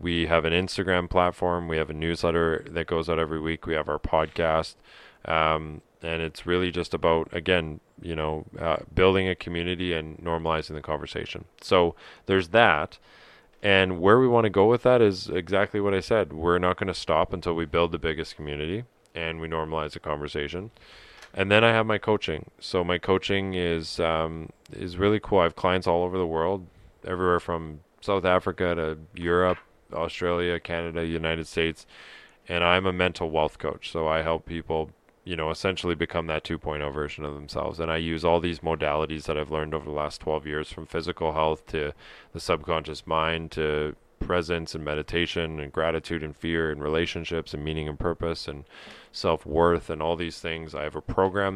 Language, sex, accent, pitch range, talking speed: English, male, American, 80-90 Hz, 190 wpm